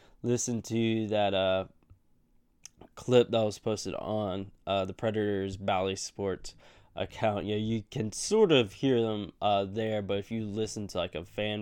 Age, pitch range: 10-29, 100-115 Hz